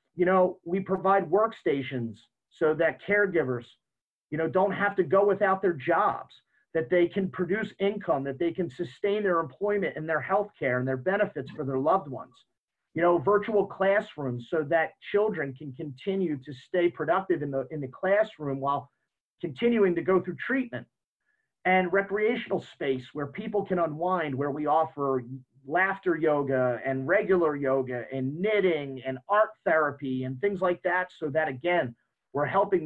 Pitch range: 135-185 Hz